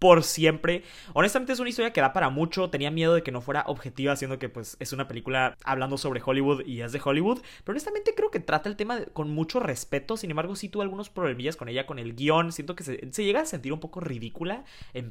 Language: Spanish